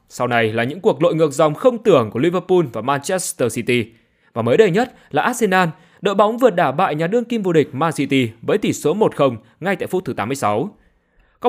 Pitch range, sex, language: 130-220 Hz, male, Vietnamese